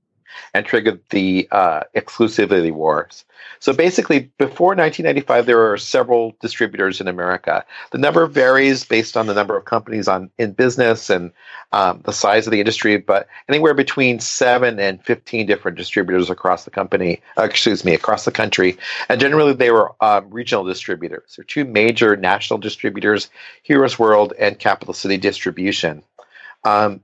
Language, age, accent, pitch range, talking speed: English, 40-59, American, 100-125 Hz, 160 wpm